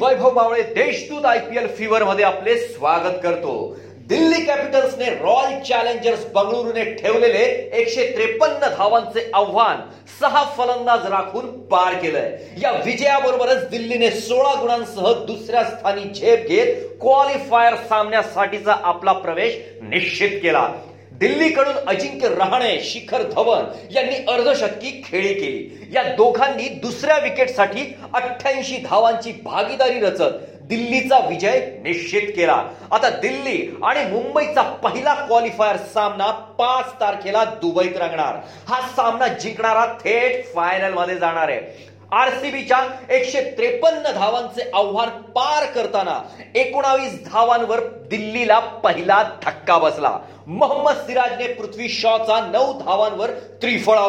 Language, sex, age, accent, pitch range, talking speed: Marathi, male, 40-59, native, 220-290 Hz, 80 wpm